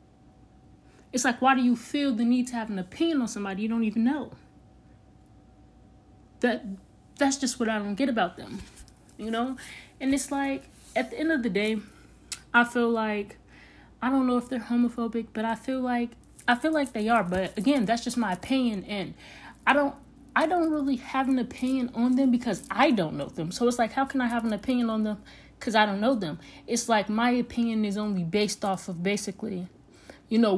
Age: 20-39